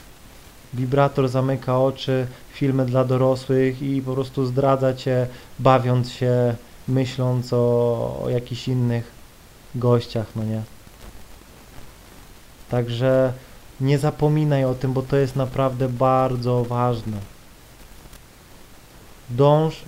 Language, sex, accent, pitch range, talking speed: Polish, male, native, 125-175 Hz, 100 wpm